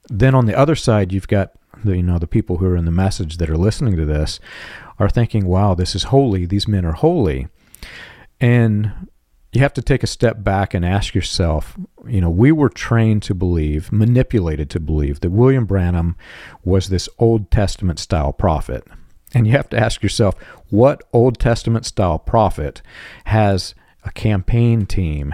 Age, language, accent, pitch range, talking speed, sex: 40-59, English, American, 90-115 Hz, 180 wpm, male